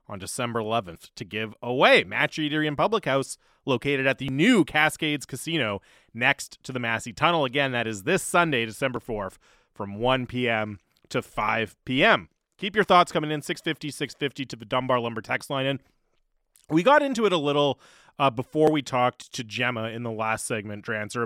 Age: 30-49